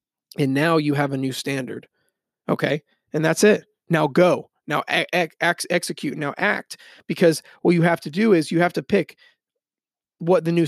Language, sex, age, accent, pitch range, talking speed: English, male, 30-49, American, 145-175 Hz, 185 wpm